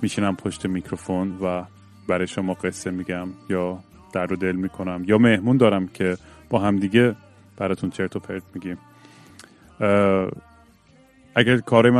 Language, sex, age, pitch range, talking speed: Persian, male, 30-49, 95-110 Hz, 120 wpm